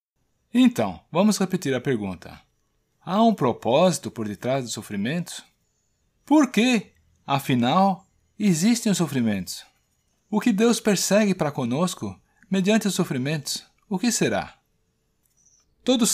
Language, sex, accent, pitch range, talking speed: Portuguese, male, Brazilian, 130-200 Hz, 115 wpm